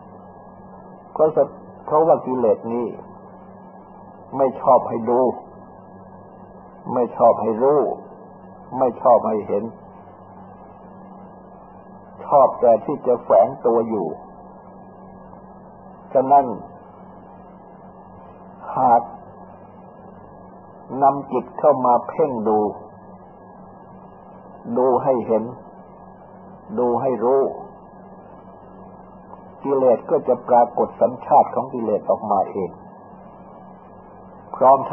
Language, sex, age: Thai, male, 60-79